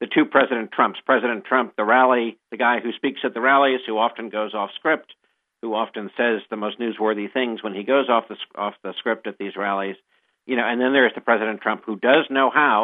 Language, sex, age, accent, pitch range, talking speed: English, male, 50-69, American, 110-135 Hz, 235 wpm